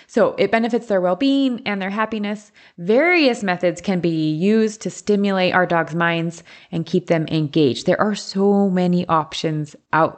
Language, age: English, 20-39